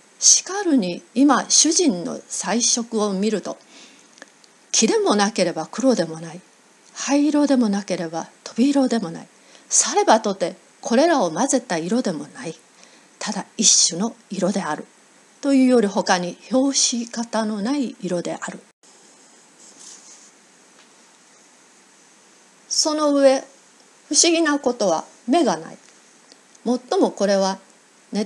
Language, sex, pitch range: Japanese, female, 200-275 Hz